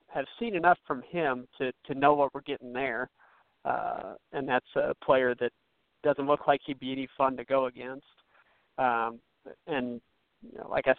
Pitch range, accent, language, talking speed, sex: 135-160 Hz, American, English, 185 wpm, male